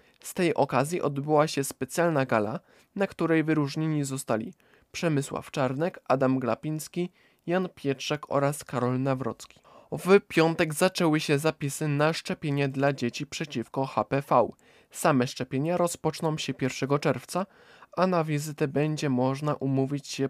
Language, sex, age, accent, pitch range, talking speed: Polish, male, 20-39, native, 130-165 Hz, 130 wpm